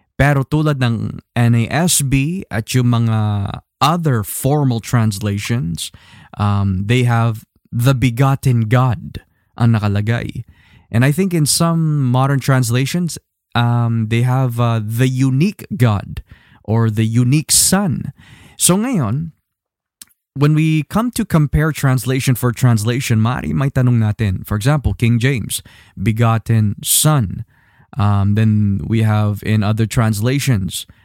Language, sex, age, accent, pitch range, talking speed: Filipino, male, 20-39, native, 110-140 Hz, 120 wpm